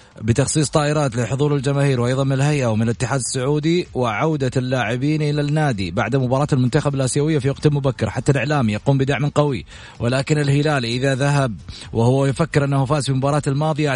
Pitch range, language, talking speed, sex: 115-145 Hz, Arabic, 155 wpm, male